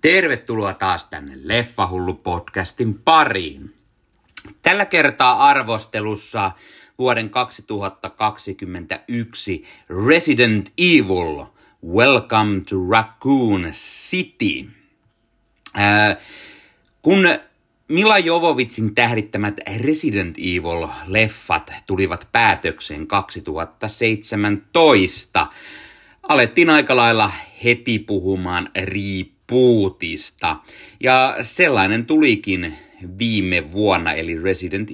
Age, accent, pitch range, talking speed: 30-49, native, 95-120 Hz, 65 wpm